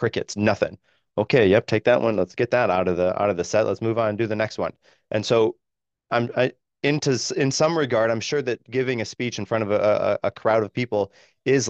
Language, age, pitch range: English, 30-49, 100-115 Hz